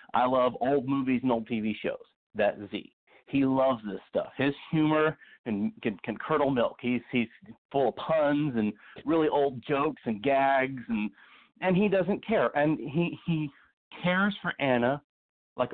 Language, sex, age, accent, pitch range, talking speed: English, male, 40-59, American, 110-140 Hz, 170 wpm